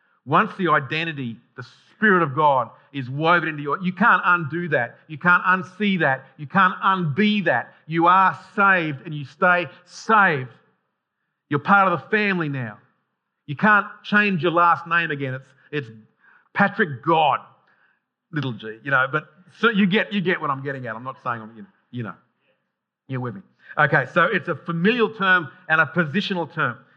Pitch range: 155-205 Hz